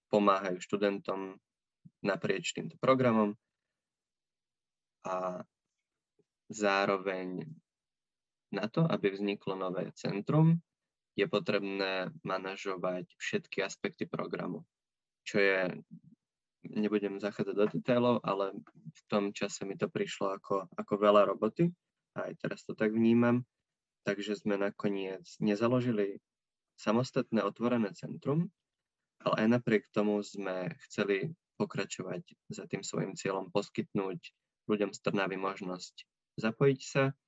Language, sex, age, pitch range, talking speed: Slovak, male, 20-39, 95-120 Hz, 110 wpm